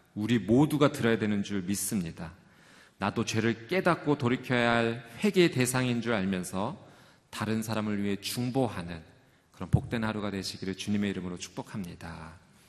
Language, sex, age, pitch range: Korean, male, 40-59, 100-145 Hz